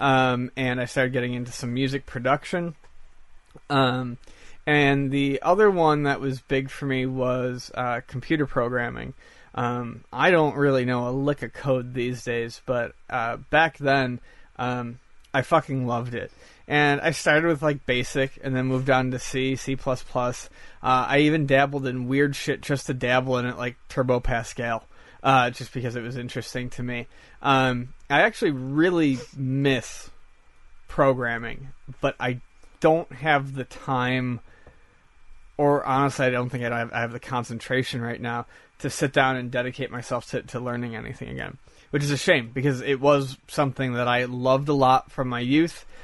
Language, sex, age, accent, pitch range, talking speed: English, male, 30-49, American, 125-140 Hz, 170 wpm